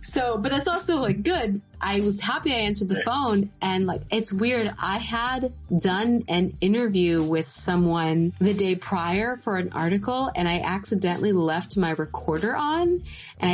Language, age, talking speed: English, 20-39, 170 wpm